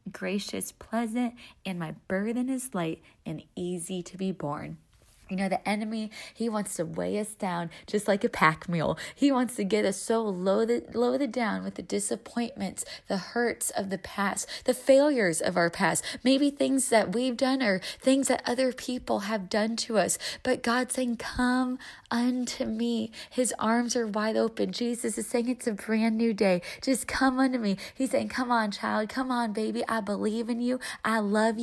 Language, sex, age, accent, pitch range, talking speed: English, female, 20-39, American, 210-260 Hz, 190 wpm